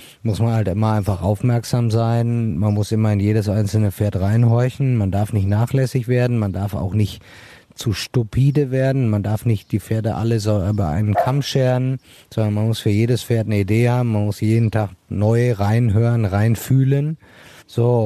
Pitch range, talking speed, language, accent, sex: 105-125 Hz, 185 wpm, German, German, male